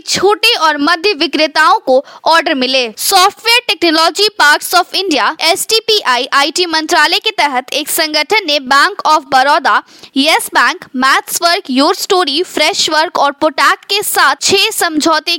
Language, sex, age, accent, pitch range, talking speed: Hindi, female, 20-39, native, 300-400 Hz, 135 wpm